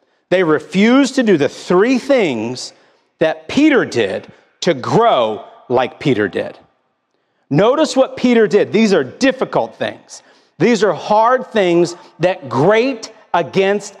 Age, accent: 40-59, American